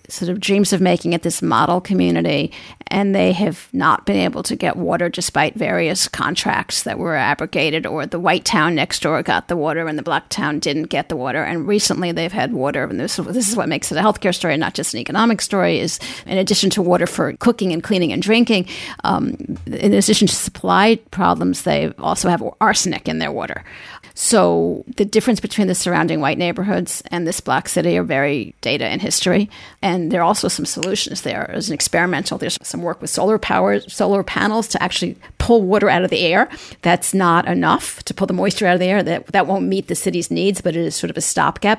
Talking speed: 220 wpm